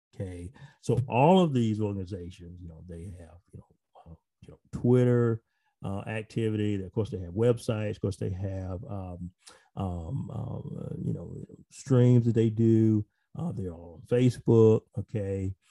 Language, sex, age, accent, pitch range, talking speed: English, male, 40-59, American, 100-120 Hz, 165 wpm